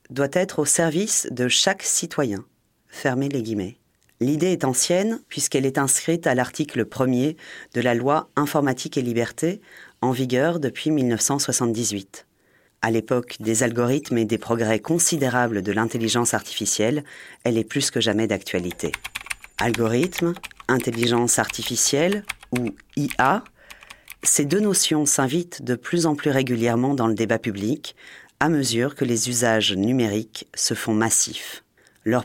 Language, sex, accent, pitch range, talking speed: French, female, French, 115-155 Hz, 140 wpm